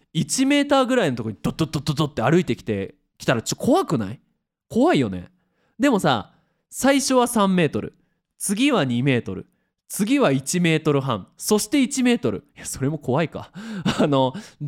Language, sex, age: Japanese, male, 20-39